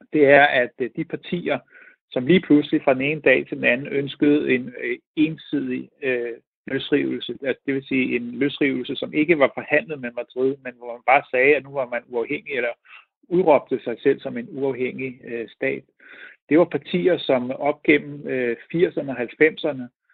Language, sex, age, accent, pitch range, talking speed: Danish, male, 60-79, native, 130-150 Hz, 170 wpm